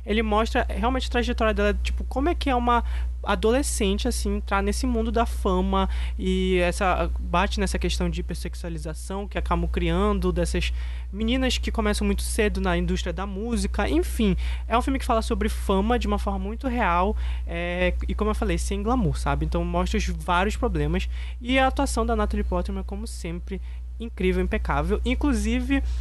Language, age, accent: Portuguese, 20-39, Brazilian